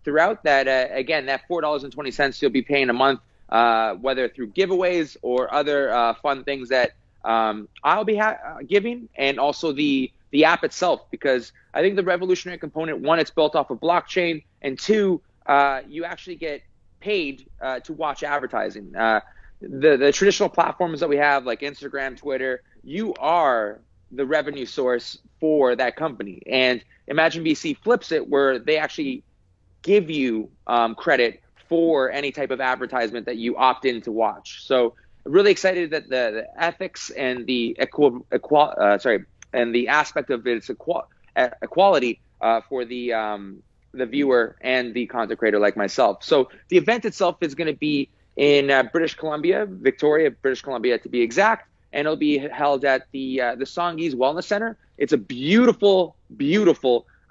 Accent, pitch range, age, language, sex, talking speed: American, 125-165 Hz, 30-49, English, male, 175 wpm